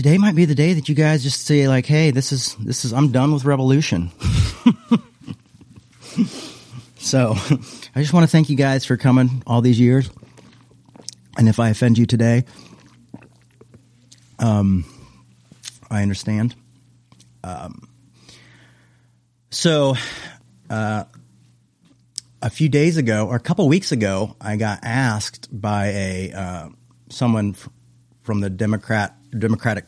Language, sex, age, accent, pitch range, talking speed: English, male, 40-59, American, 105-135 Hz, 130 wpm